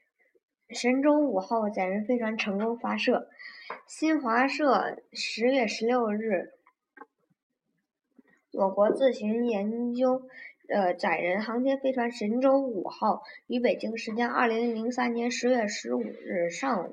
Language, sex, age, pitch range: Chinese, male, 20-39, 210-255 Hz